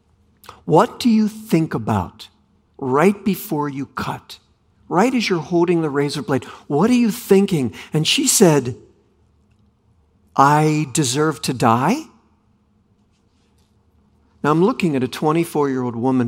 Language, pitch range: English, 115-185 Hz